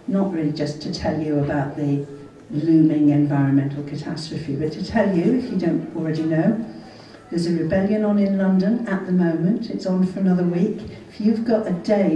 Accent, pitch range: British, 165-205 Hz